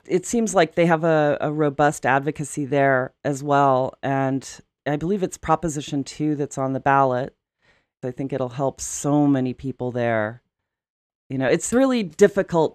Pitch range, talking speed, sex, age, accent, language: 130-150 Hz, 165 wpm, female, 40-59, American, English